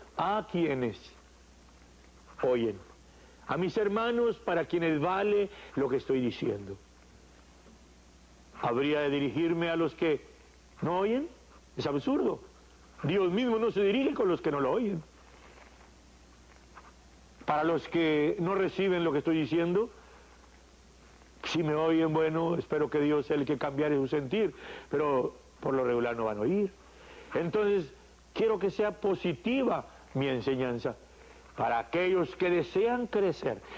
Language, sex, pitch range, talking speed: English, male, 120-195 Hz, 135 wpm